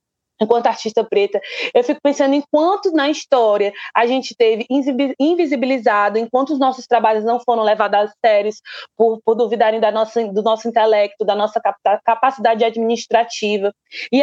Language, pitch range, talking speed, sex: Hungarian, 215-270 Hz, 145 wpm, female